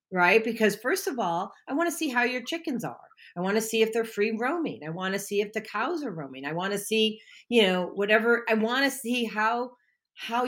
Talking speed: 245 wpm